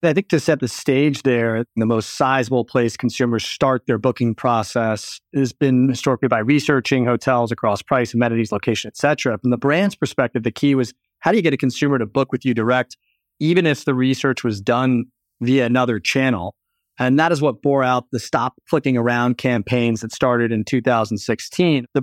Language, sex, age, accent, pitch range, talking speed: English, male, 30-49, American, 120-145 Hz, 195 wpm